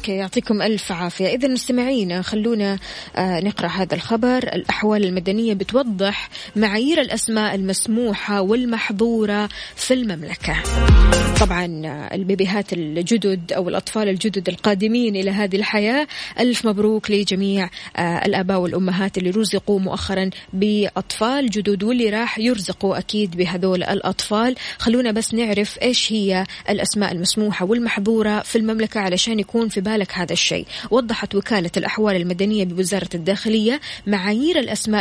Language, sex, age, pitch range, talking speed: Arabic, female, 20-39, 195-230 Hz, 115 wpm